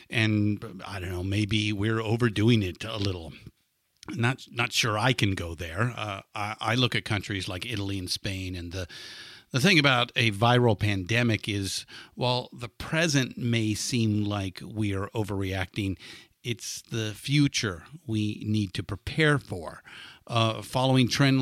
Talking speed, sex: 155 wpm, male